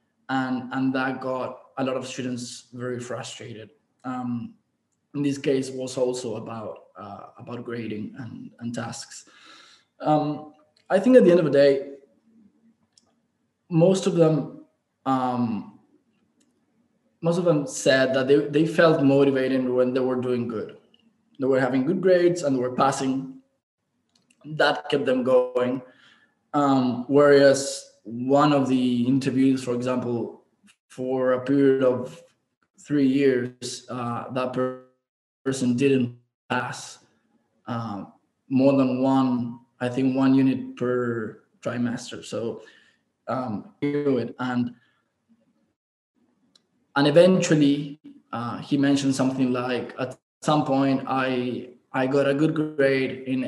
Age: 20-39